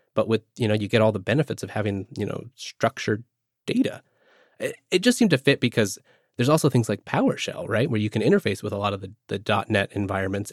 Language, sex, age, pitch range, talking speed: English, male, 30-49, 105-145 Hz, 230 wpm